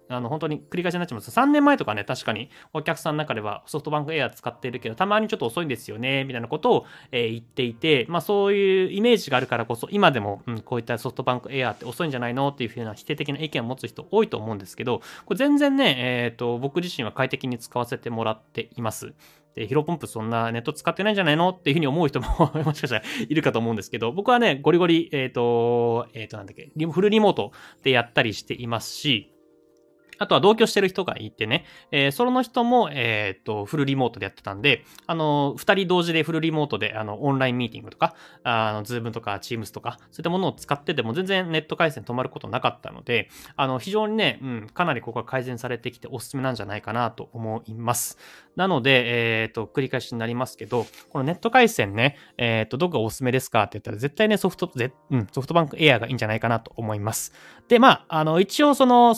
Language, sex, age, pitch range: Japanese, male, 20-39, 115-170 Hz